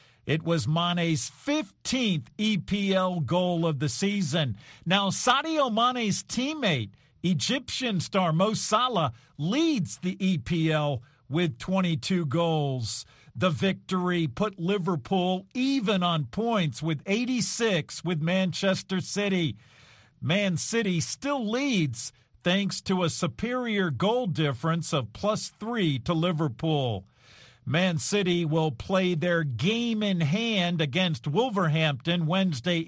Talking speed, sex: 110 wpm, male